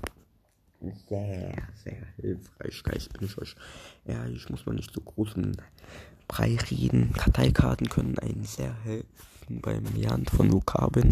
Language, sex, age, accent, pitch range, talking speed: German, male, 20-39, German, 90-130 Hz, 135 wpm